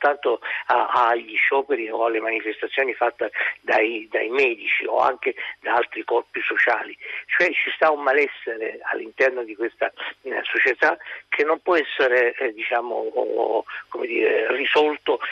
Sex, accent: male, native